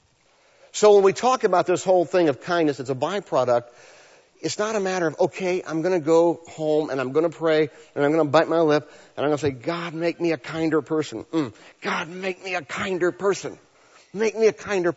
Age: 50-69